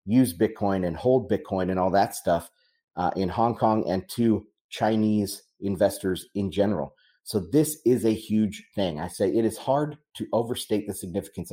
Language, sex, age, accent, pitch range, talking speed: English, male, 30-49, American, 100-125 Hz, 175 wpm